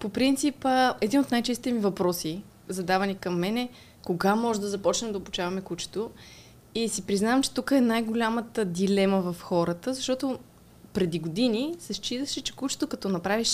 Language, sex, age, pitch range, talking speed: Bulgarian, female, 20-39, 195-245 Hz, 160 wpm